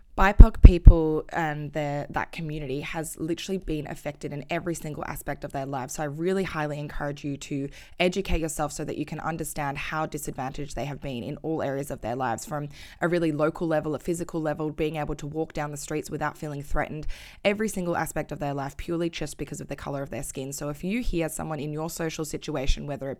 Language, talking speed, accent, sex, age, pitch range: English, 220 wpm, Australian, female, 20-39, 145-165 Hz